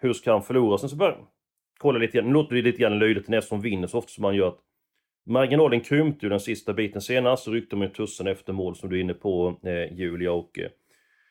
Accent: native